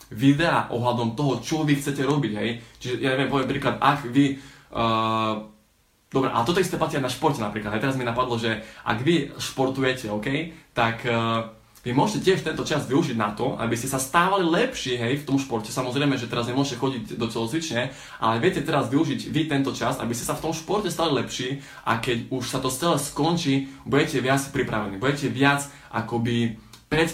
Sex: male